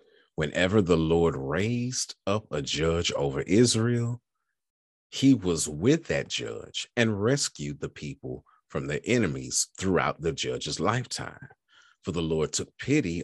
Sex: male